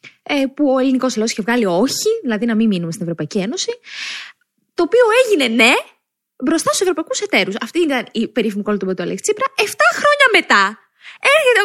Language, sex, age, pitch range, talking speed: Greek, female, 20-39, 210-345 Hz, 175 wpm